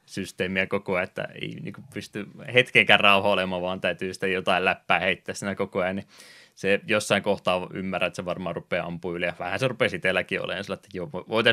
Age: 20-39